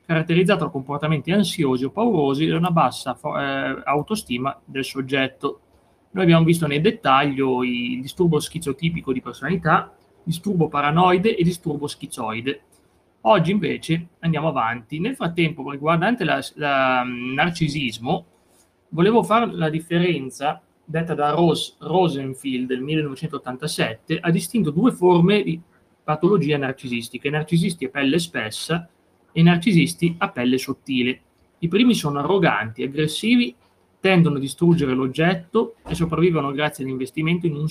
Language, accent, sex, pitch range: Italian, native, male, 135-175 Hz